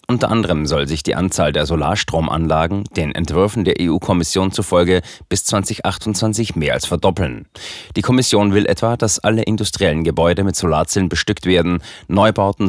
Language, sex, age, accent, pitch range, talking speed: German, male, 30-49, German, 85-105 Hz, 145 wpm